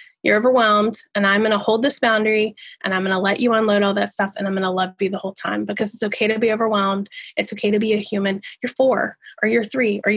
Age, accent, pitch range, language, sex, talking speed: 20-39, American, 210-285 Hz, English, female, 270 wpm